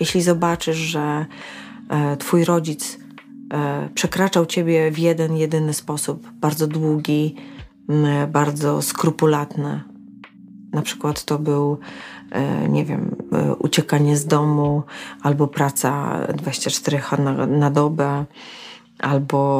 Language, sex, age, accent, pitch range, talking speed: Polish, female, 30-49, native, 145-190 Hz, 95 wpm